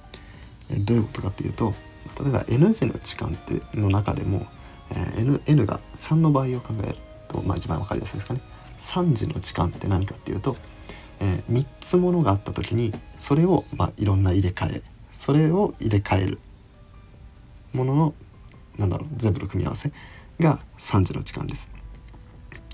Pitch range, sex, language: 100-135 Hz, male, Japanese